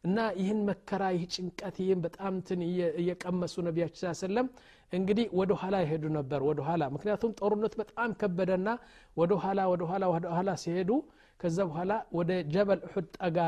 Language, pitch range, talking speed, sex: Amharic, 165-205 Hz, 145 wpm, male